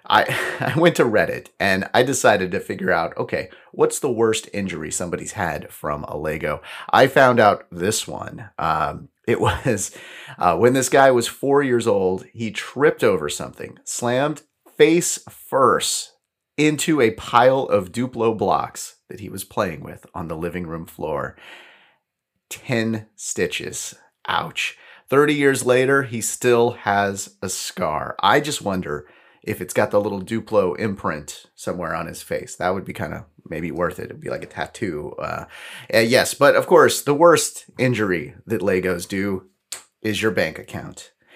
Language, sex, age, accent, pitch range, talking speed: English, male, 30-49, American, 100-125 Hz, 165 wpm